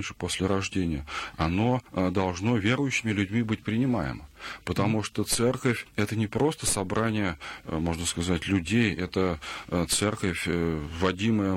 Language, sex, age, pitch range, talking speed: Russian, male, 40-59, 90-110 Hz, 115 wpm